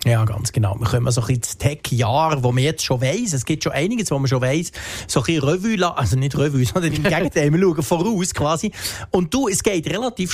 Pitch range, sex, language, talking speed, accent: 130-175 Hz, male, German, 245 wpm, Austrian